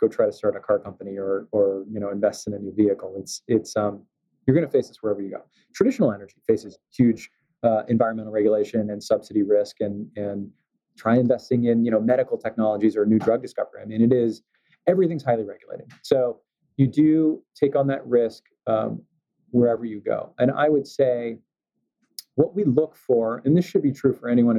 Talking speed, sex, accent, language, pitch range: 200 wpm, male, American, English, 110-140 Hz